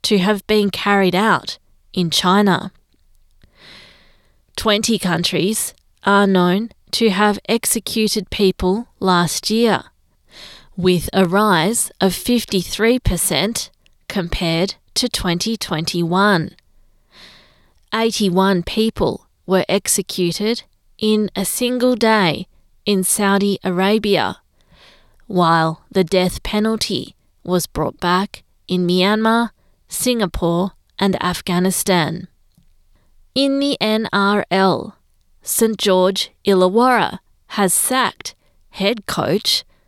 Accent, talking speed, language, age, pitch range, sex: Australian, 95 wpm, English, 20-39, 180-215 Hz, female